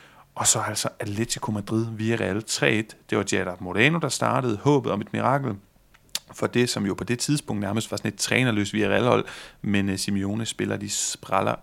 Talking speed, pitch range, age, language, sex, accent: 190 wpm, 100-125 Hz, 30-49, Danish, male, native